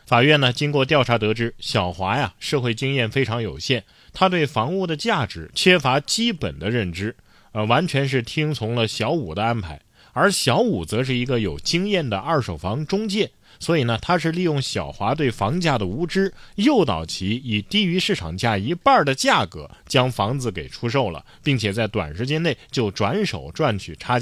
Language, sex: Chinese, male